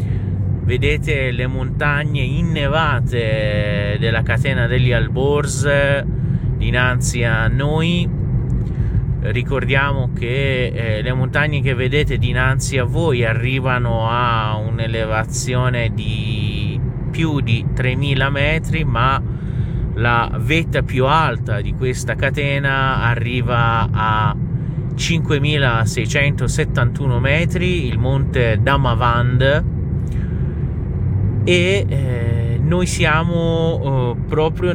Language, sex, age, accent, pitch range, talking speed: Italian, male, 30-49, native, 115-135 Hz, 85 wpm